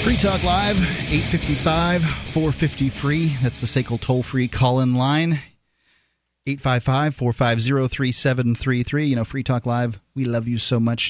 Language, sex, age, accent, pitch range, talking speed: English, male, 30-49, American, 105-130 Hz, 115 wpm